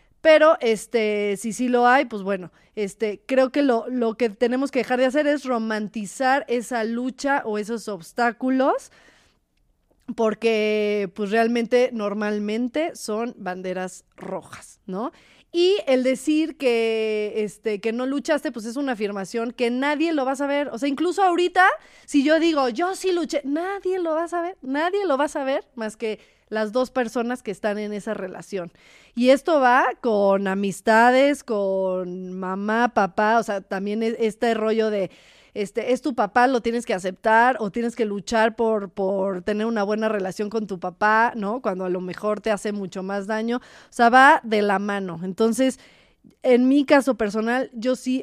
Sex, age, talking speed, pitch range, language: female, 30-49, 170 wpm, 210-260 Hz, Spanish